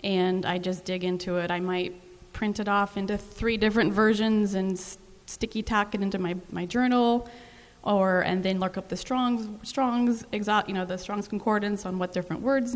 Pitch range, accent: 180-210 Hz, American